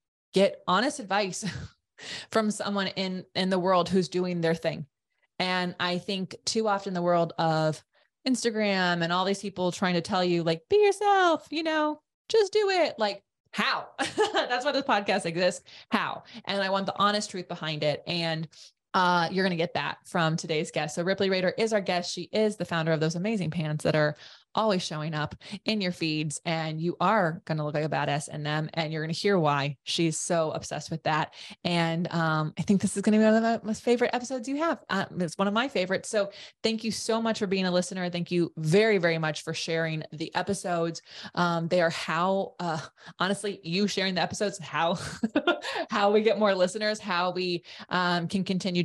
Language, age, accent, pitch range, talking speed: English, 20-39, American, 160-205 Hz, 210 wpm